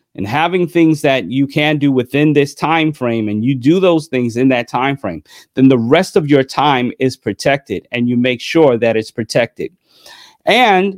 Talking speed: 195 wpm